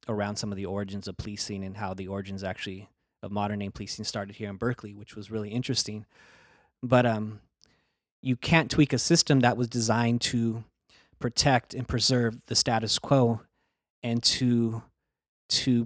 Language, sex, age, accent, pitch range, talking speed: English, male, 30-49, American, 105-125 Hz, 165 wpm